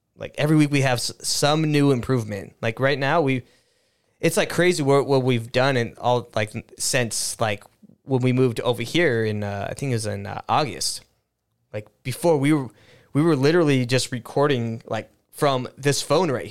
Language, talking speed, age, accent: English, 185 wpm, 20-39, American